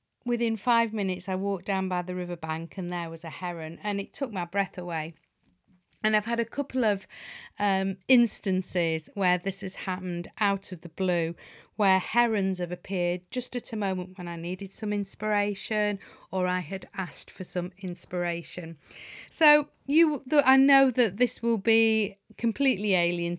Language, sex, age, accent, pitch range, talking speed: English, female, 40-59, British, 175-205 Hz, 170 wpm